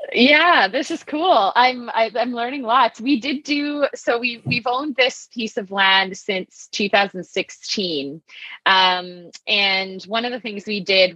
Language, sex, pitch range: English, female, 185-225 Hz